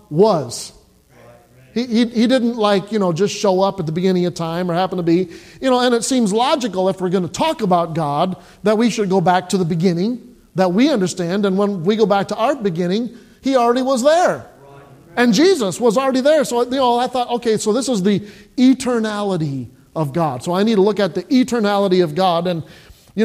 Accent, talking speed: American, 220 wpm